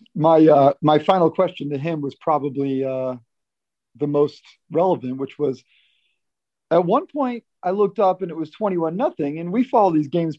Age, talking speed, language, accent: 40-59, 175 wpm, English, American